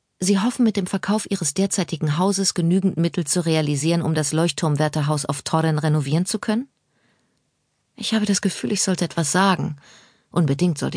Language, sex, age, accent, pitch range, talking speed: German, female, 40-59, German, 145-185 Hz, 165 wpm